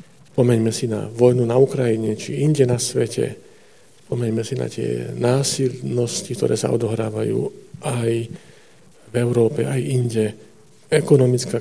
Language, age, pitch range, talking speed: Slovak, 50-69, 115-140 Hz, 125 wpm